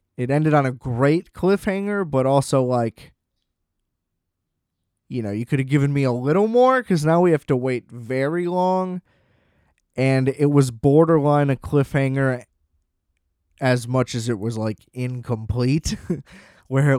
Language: English